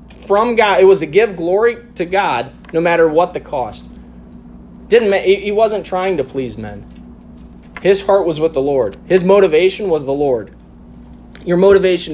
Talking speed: 170 wpm